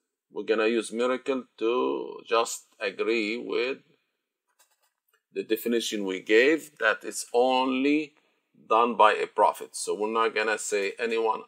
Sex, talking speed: male, 140 wpm